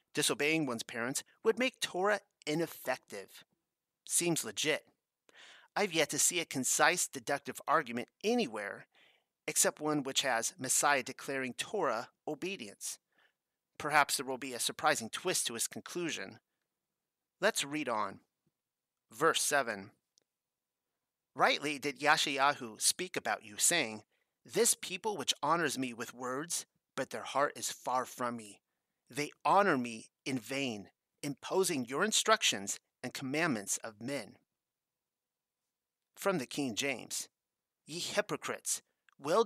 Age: 30-49